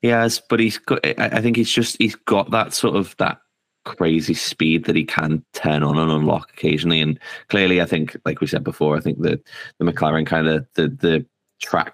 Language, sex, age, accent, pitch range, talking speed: English, male, 10-29, British, 75-95 Hz, 215 wpm